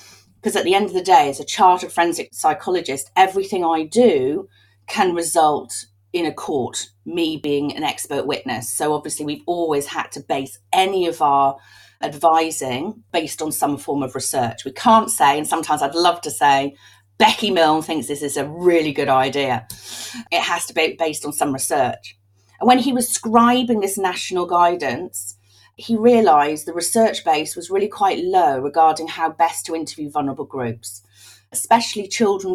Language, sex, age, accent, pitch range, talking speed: English, female, 40-59, British, 135-195 Hz, 175 wpm